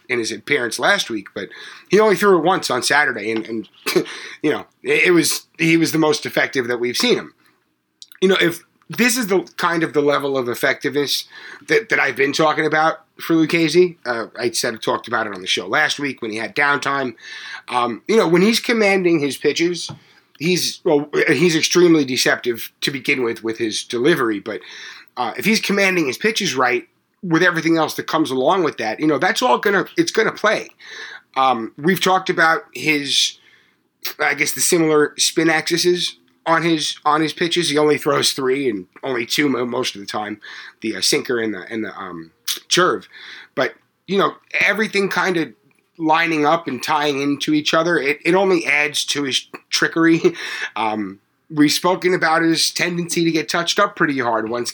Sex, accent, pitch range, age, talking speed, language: male, American, 135-180 Hz, 30-49, 195 wpm, English